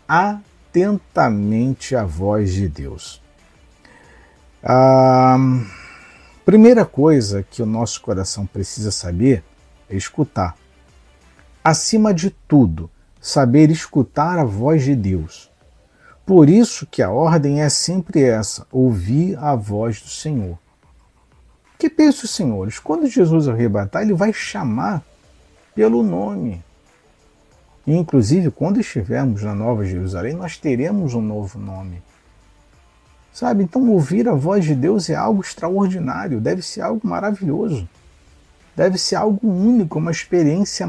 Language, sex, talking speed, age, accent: Portuguese, male, 120 wpm, 50-69, Brazilian